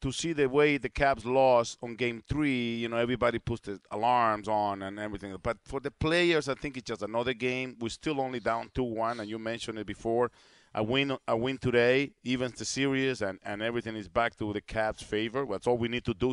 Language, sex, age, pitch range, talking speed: English, male, 50-69, 110-130 Hz, 230 wpm